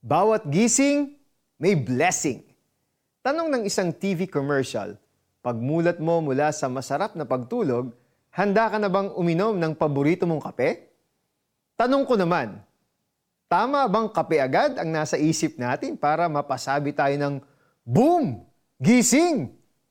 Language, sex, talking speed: Filipino, male, 125 wpm